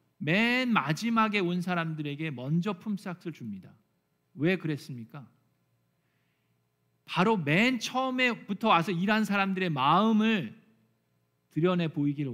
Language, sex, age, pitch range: Korean, male, 40-59, 145-215 Hz